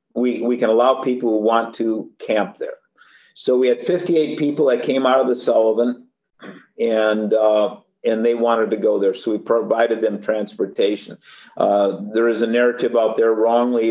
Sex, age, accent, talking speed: male, 50-69, American, 180 wpm